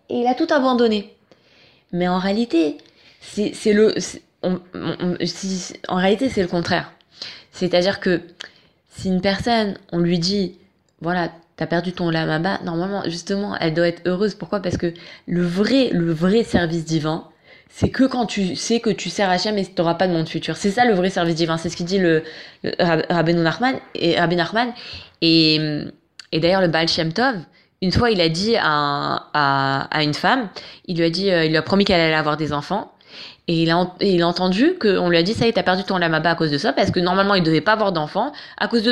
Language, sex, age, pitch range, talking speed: French, female, 20-39, 170-225 Hz, 220 wpm